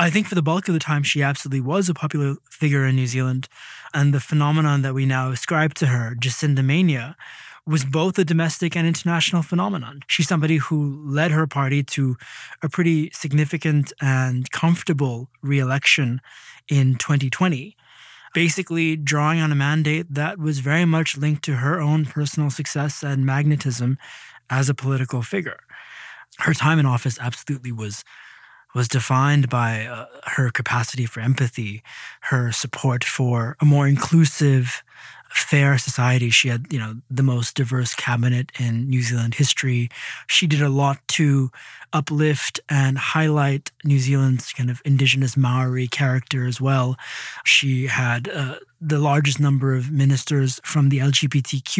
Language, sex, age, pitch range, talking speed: English, male, 20-39, 130-155 Hz, 155 wpm